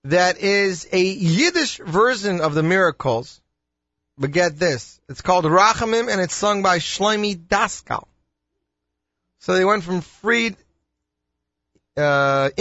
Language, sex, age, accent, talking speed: English, male, 30-49, American, 125 wpm